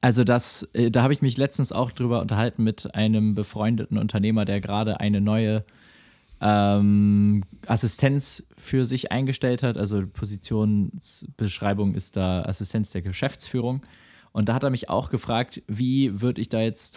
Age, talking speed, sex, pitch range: 20-39, 150 wpm, male, 100-125 Hz